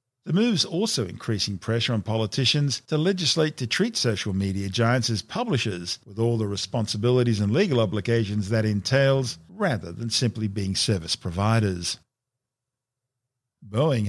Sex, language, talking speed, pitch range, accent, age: male, English, 135 wpm, 110-145 Hz, Australian, 50-69